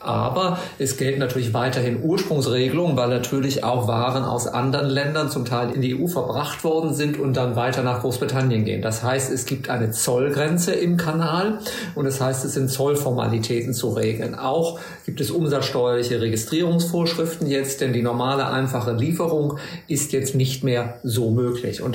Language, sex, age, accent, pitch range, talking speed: German, male, 50-69, German, 125-150 Hz, 170 wpm